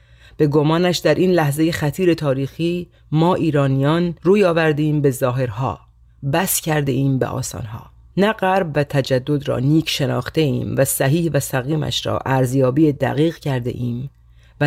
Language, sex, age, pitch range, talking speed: Persian, female, 40-59, 130-165 Hz, 145 wpm